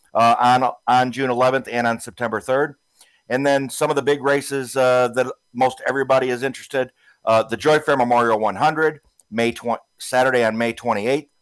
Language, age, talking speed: English, 50-69, 180 wpm